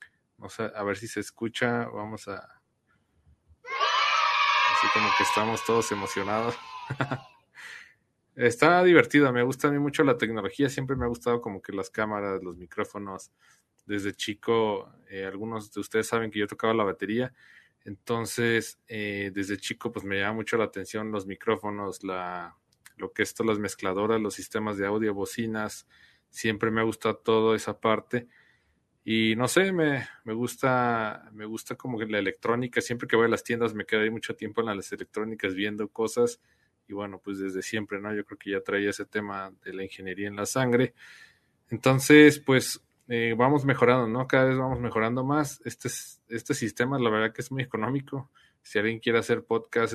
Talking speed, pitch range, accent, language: 175 wpm, 105-120 Hz, Mexican, Spanish